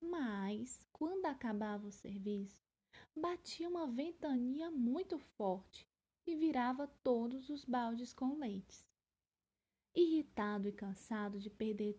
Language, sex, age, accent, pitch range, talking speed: Portuguese, female, 20-39, Brazilian, 210-320 Hz, 110 wpm